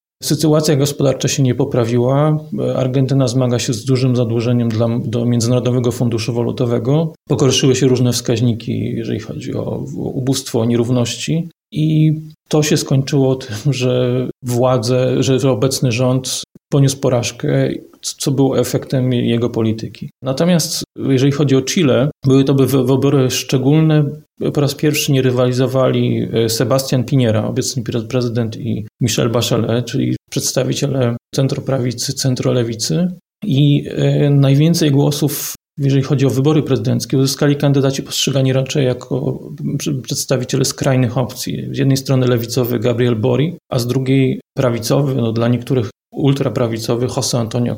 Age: 30-49